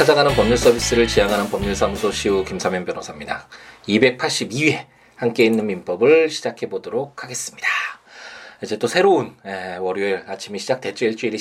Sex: male